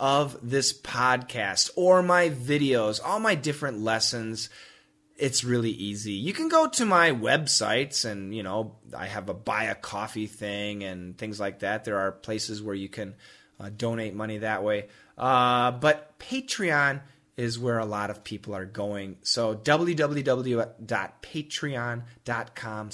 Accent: American